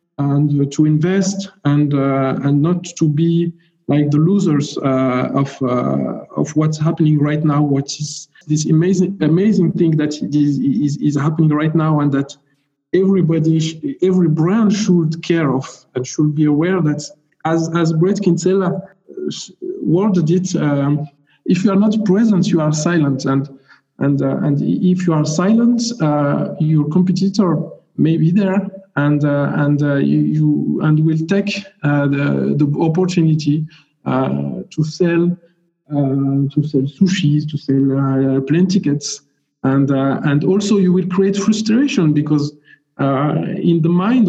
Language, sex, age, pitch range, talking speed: English, male, 50-69, 145-185 Hz, 155 wpm